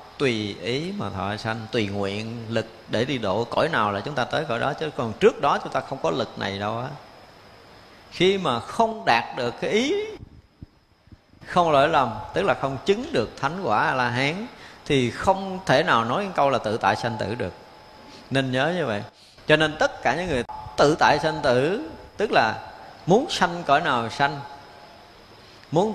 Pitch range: 115-175 Hz